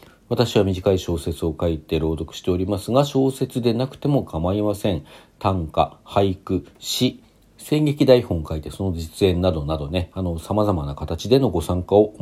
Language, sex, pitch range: Japanese, male, 85-120 Hz